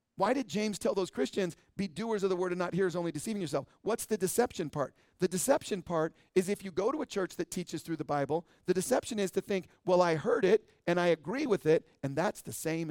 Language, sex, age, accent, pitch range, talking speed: English, male, 50-69, American, 160-200 Hz, 250 wpm